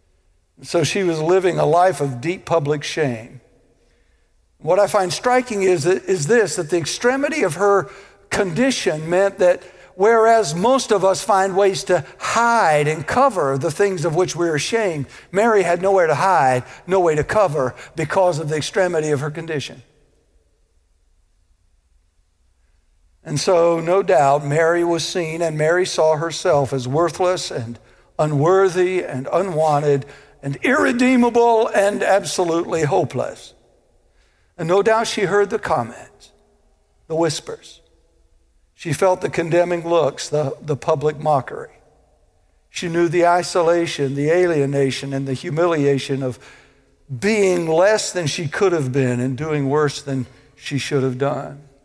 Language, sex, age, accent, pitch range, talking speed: English, male, 60-79, American, 130-185 Hz, 140 wpm